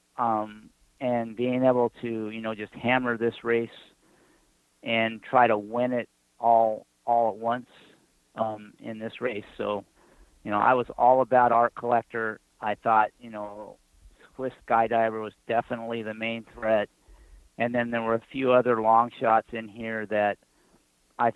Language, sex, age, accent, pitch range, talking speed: English, male, 40-59, American, 110-120 Hz, 160 wpm